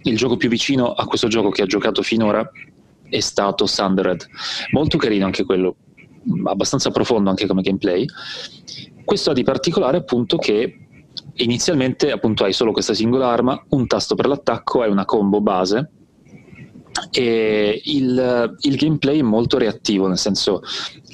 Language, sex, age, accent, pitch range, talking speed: Italian, male, 30-49, native, 100-120 Hz, 155 wpm